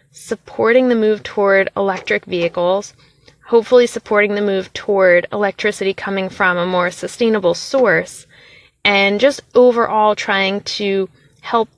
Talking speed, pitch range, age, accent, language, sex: 120 wpm, 190-245 Hz, 20-39, American, English, female